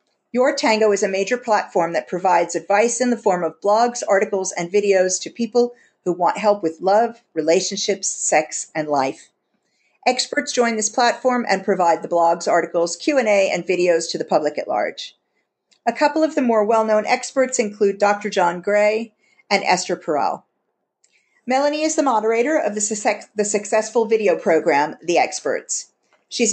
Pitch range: 185-240 Hz